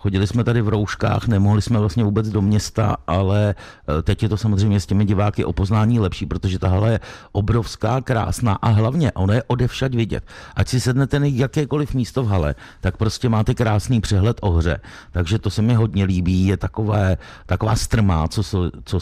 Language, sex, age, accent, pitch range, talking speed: Czech, male, 60-79, native, 85-105 Hz, 190 wpm